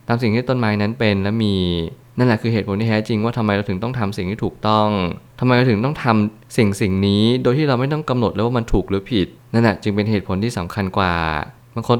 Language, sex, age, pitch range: Thai, male, 20-39, 100-120 Hz